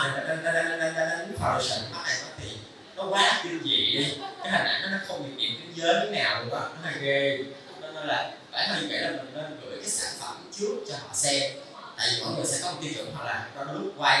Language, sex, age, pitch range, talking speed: Vietnamese, male, 20-39, 125-165 Hz, 230 wpm